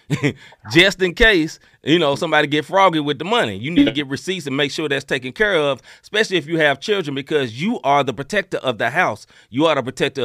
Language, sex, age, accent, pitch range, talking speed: English, male, 30-49, American, 120-160 Hz, 235 wpm